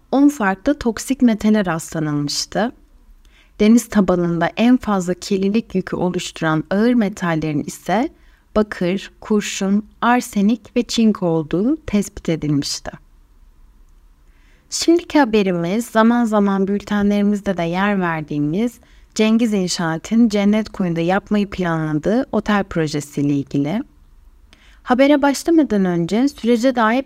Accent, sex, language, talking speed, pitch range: native, female, Turkish, 100 wpm, 170-240 Hz